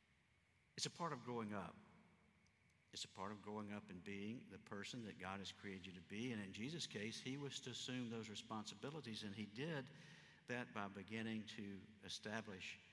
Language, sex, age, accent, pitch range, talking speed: English, male, 60-79, American, 95-115 Hz, 190 wpm